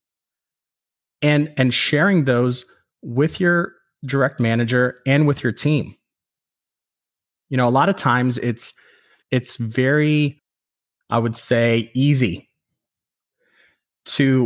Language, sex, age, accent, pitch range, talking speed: English, male, 30-49, American, 115-140 Hz, 110 wpm